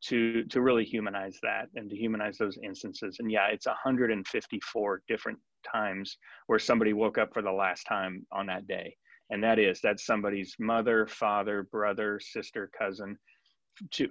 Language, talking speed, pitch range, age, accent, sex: English, 160 wpm, 105-120 Hz, 30-49, American, male